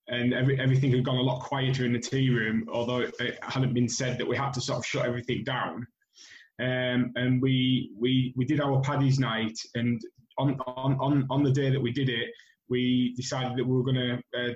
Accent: British